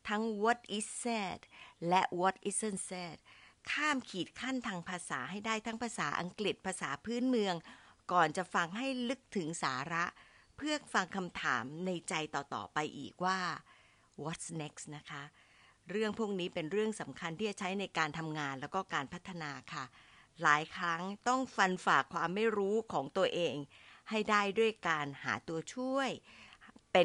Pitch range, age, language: 160-220 Hz, 60-79, Thai